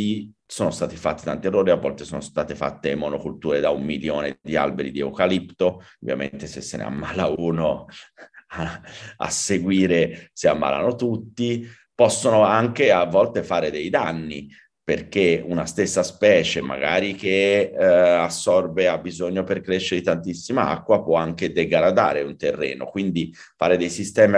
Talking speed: 150 wpm